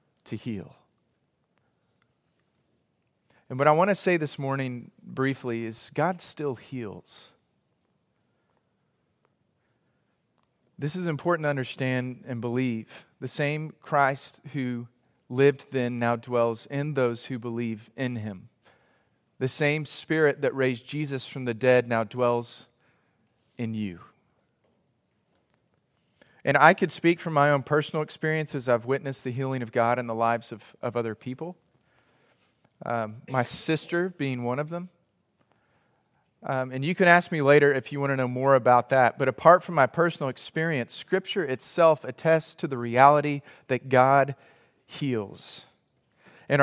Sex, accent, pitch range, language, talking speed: male, American, 125-150 Hz, English, 140 wpm